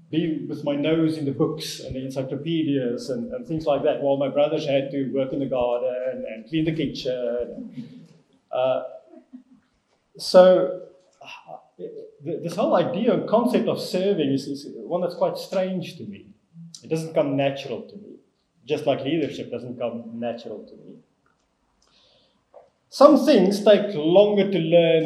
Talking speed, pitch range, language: 160 wpm, 135-205 Hz, English